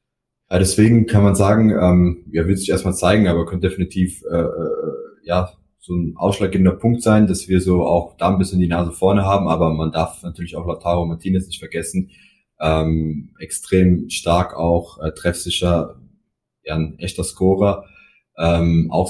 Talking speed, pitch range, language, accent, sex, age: 150 wpm, 85-100 Hz, German, German, male, 20-39